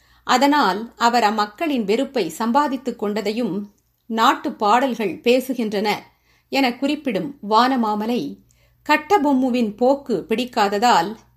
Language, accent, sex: Tamil, native, female